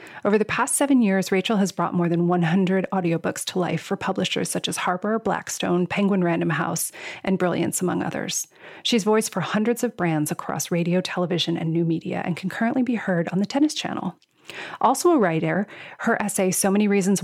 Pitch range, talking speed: 175-225 Hz, 195 wpm